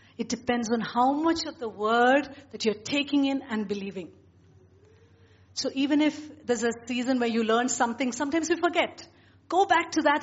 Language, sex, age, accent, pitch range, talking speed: English, female, 50-69, Indian, 195-275 Hz, 180 wpm